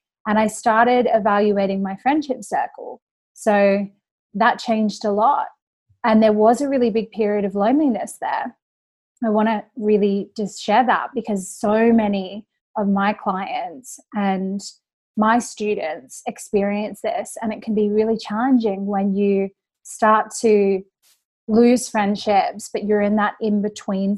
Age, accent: 20-39, Australian